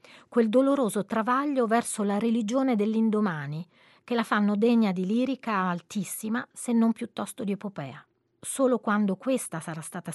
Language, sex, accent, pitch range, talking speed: Italian, female, native, 180-235 Hz, 140 wpm